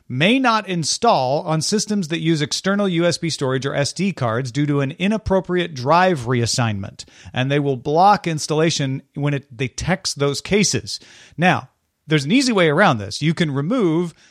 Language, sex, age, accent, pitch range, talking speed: English, male, 40-59, American, 130-180 Hz, 165 wpm